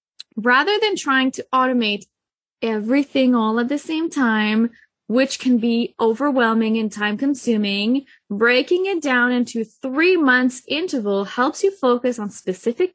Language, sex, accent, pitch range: English, female, American, 220-275 Hz